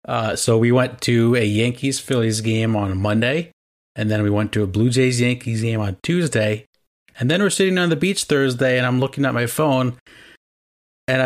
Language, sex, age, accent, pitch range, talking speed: English, male, 30-49, American, 105-125 Hz, 205 wpm